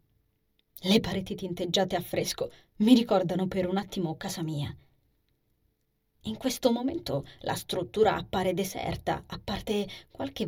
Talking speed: 125 wpm